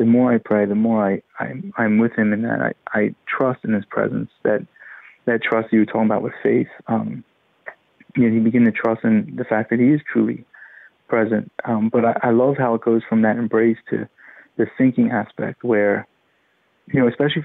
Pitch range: 110-130 Hz